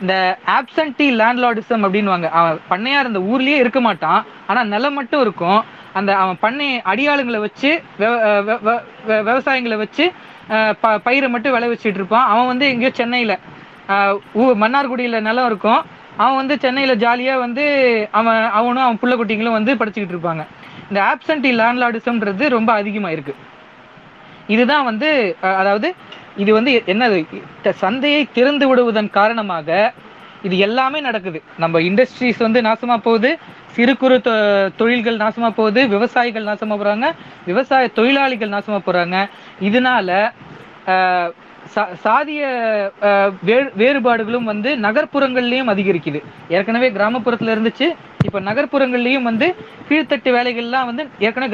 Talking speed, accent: 115 wpm, native